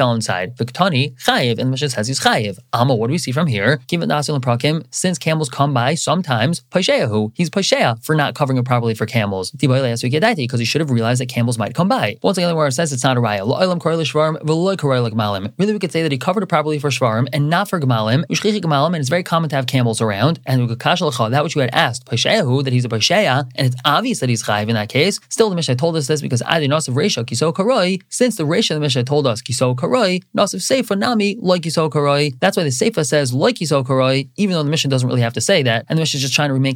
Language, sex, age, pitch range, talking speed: English, male, 20-39, 125-165 Hz, 230 wpm